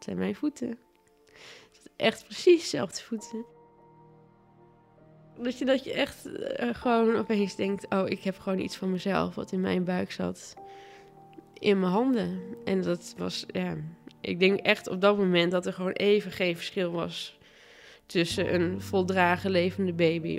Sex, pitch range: female, 165-205 Hz